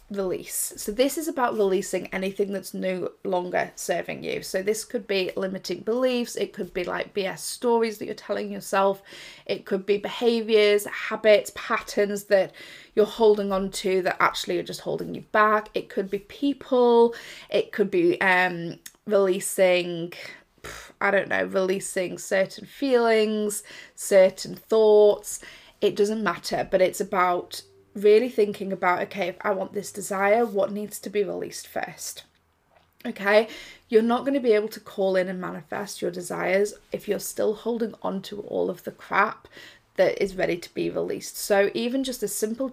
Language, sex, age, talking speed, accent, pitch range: English, female, 20-39, 165 wpm, British, 190-215 Hz